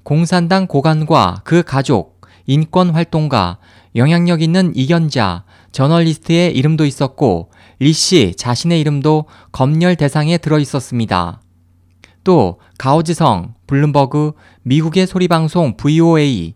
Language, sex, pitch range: Korean, male, 105-170 Hz